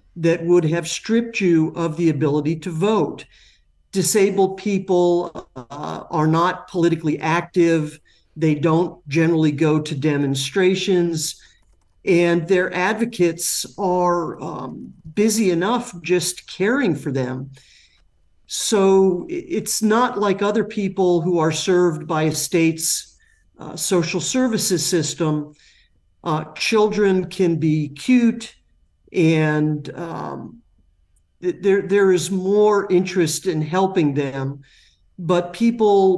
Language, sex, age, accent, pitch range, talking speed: English, male, 50-69, American, 150-185 Hz, 110 wpm